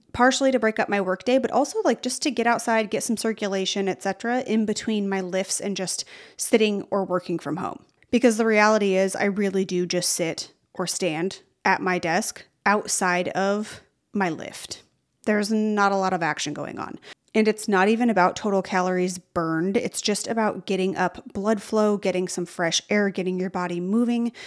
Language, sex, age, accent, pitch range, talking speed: English, female, 30-49, American, 180-220 Hz, 190 wpm